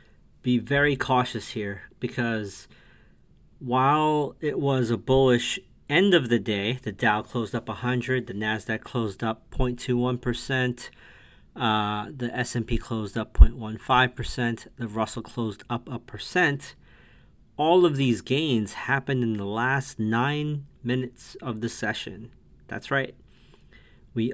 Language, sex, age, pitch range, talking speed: English, male, 40-59, 110-125 Hz, 125 wpm